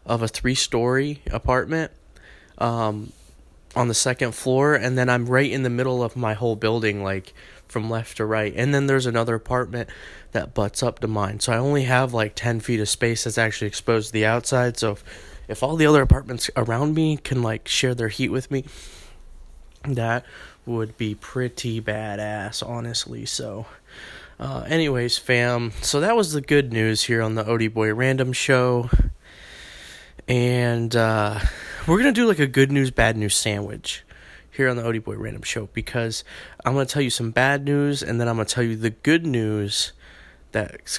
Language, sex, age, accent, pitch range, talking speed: English, male, 20-39, American, 110-130 Hz, 190 wpm